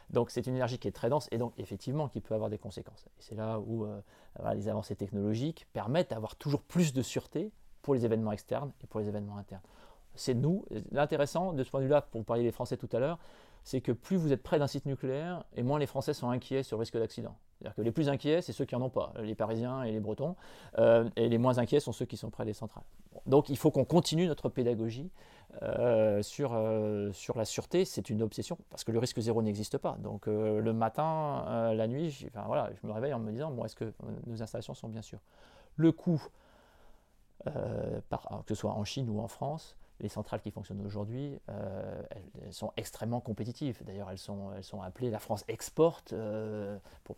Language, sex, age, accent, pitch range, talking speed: French, male, 30-49, French, 105-135 Hz, 230 wpm